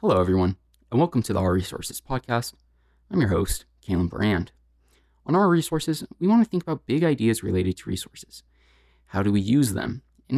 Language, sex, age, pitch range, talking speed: English, male, 20-39, 90-130 Hz, 190 wpm